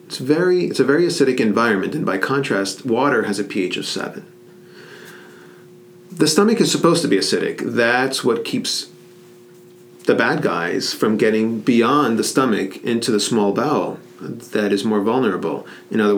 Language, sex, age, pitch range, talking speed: English, male, 40-59, 100-150 Hz, 165 wpm